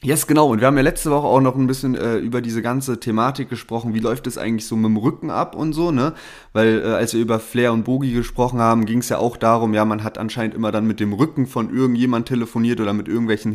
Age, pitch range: 20-39, 110-125 Hz